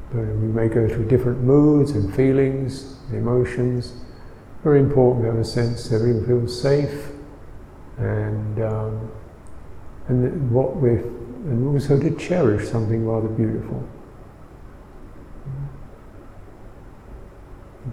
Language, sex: English, male